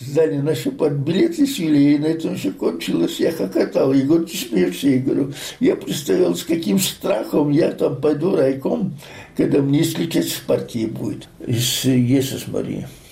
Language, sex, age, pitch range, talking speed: Russian, male, 60-79, 125-150 Hz, 155 wpm